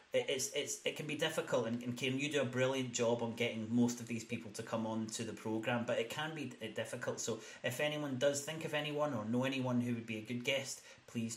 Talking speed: 240 wpm